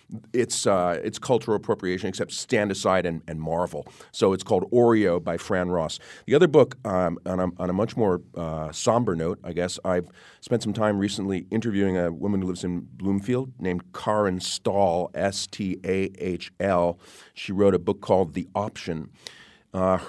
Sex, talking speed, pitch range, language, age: male, 170 wpm, 85-100 Hz, English, 40-59